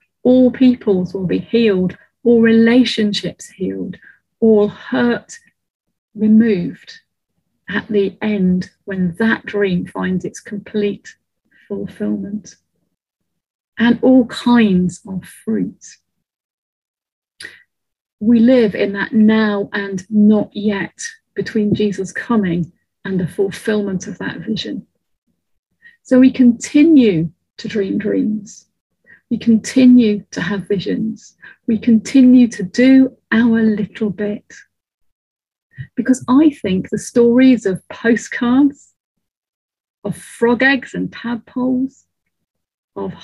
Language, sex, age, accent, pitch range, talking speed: English, female, 40-59, British, 200-240 Hz, 105 wpm